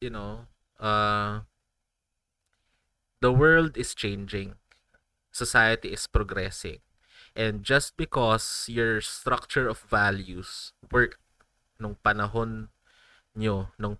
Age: 20-39